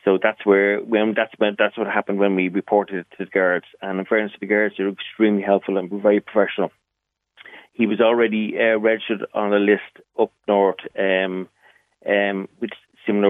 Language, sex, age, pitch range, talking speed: English, male, 30-49, 100-110 Hz, 195 wpm